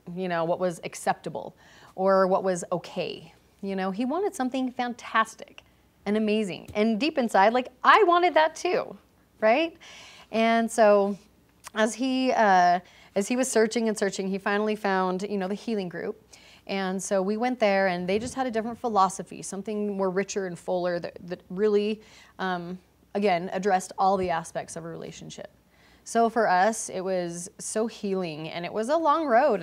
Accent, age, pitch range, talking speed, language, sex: American, 30-49, 185-215 Hz, 175 wpm, English, female